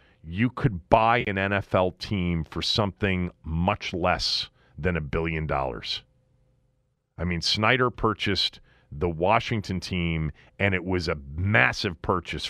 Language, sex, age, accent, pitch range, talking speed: English, male, 40-59, American, 80-115 Hz, 130 wpm